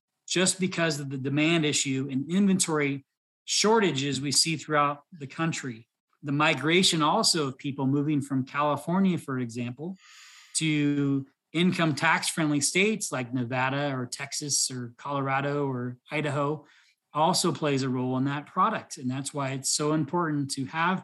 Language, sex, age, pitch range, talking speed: English, male, 30-49, 135-170 Hz, 145 wpm